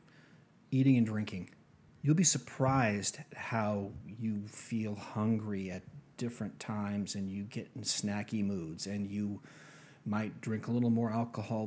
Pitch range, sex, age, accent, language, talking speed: 105-135 Hz, male, 40-59, American, English, 140 wpm